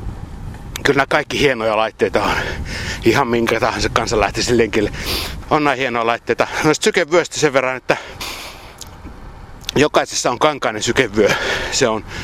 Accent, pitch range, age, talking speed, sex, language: native, 105-135 Hz, 60-79, 130 wpm, male, Finnish